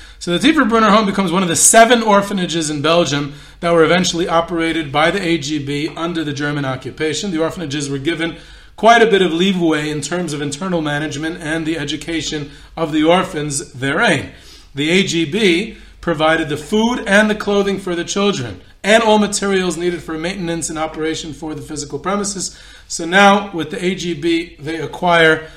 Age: 40-59